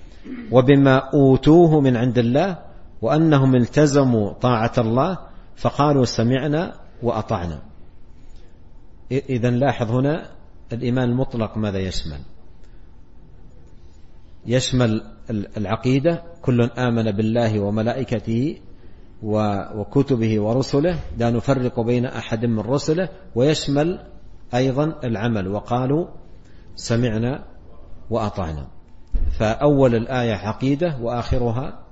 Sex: male